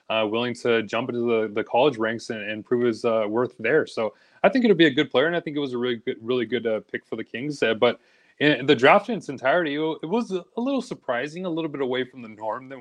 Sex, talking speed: male, 285 wpm